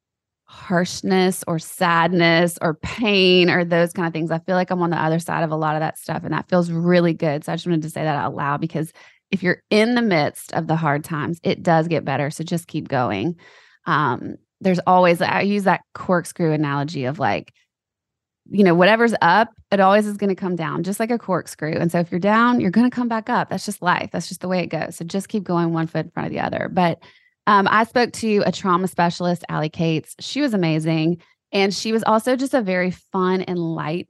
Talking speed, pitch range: 240 wpm, 165-200 Hz